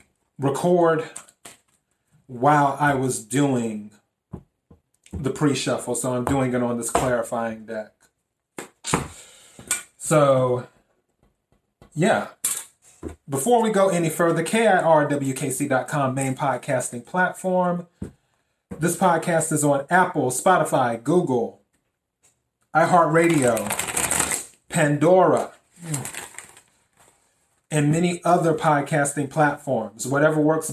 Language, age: English, 30-49